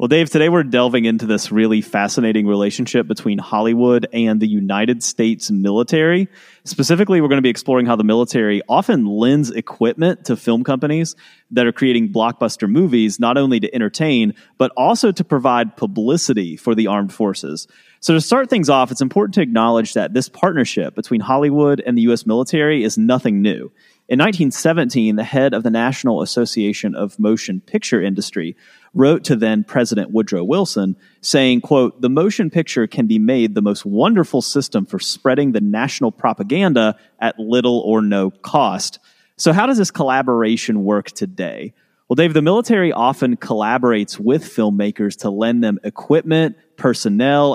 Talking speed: 165 wpm